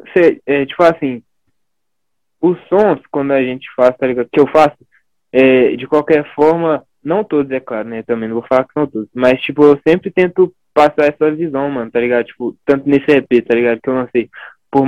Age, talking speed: 20-39, 215 wpm